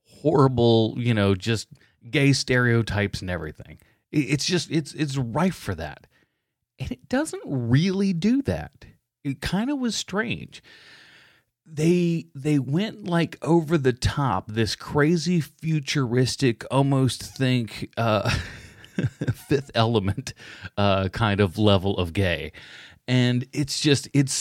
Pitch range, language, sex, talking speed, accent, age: 115-160 Hz, English, male, 125 wpm, American, 30-49